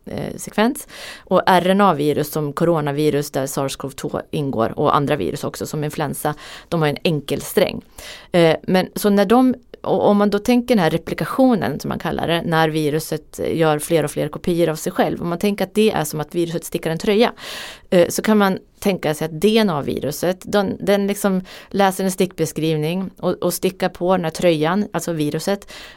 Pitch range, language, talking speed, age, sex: 160-205 Hz, Swedish, 180 wpm, 30-49, female